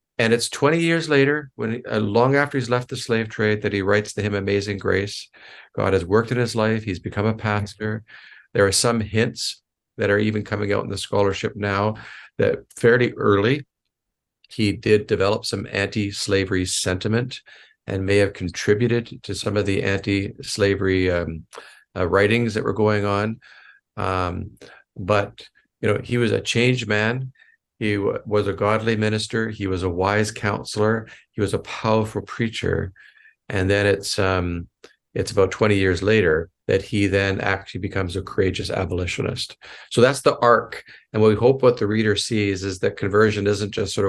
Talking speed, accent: 175 wpm, American